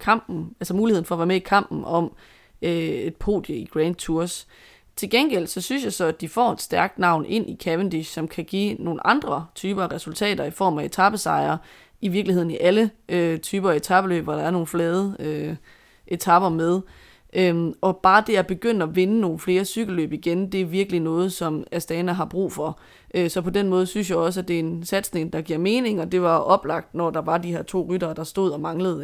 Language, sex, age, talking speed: Danish, female, 20-39, 225 wpm